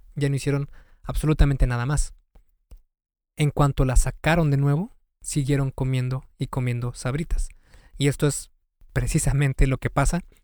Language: Spanish